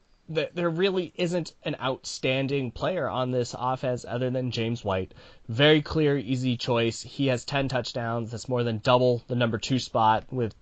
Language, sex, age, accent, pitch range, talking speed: English, male, 20-39, American, 110-130 Hz, 170 wpm